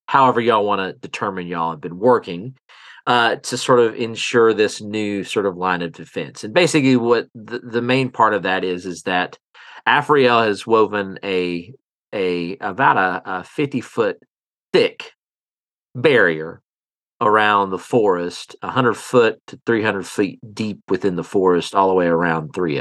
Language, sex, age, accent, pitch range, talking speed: English, male, 40-59, American, 90-120 Hz, 165 wpm